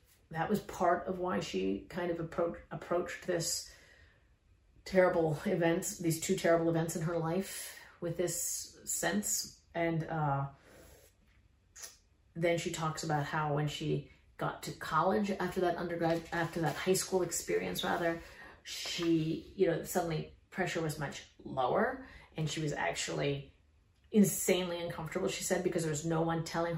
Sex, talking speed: female, 150 wpm